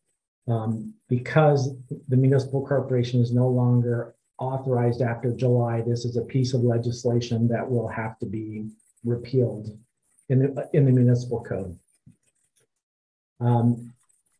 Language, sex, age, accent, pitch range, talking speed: English, male, 40-59, American, 120-130 Hz, 125 wpm